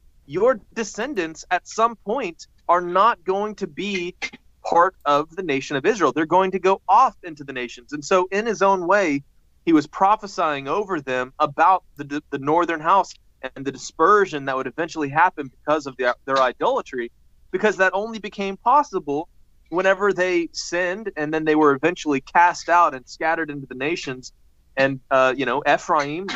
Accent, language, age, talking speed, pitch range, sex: American, English, 30-49, 175 wpm, 135-185 Hz, male